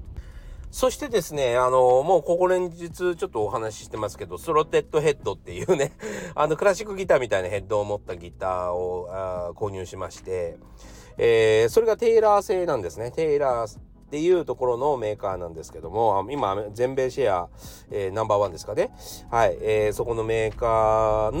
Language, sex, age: Japanese, male, 40-59